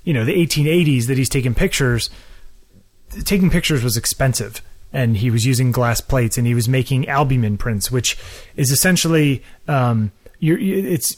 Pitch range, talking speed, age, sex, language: 125-160 Hz, 160 wpm, 30-49, male, English